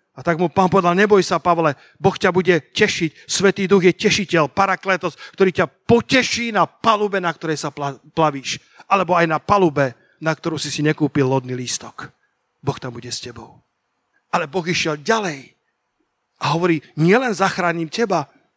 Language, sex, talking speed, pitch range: Slovak, male, 165 wpm, 160-205 Hz